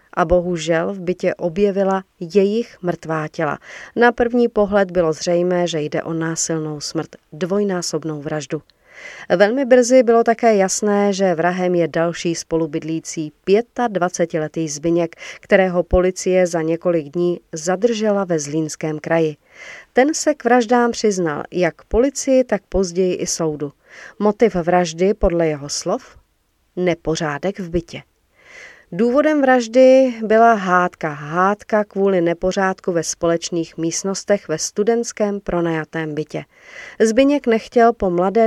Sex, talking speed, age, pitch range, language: female, 120 wpm, 40-59, 165-205 Hz, Czech